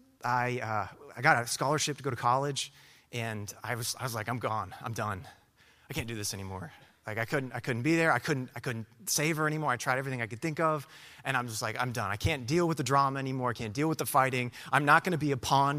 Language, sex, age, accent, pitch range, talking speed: English, male, 30-49, American, 110-140 Hz, 275 wpm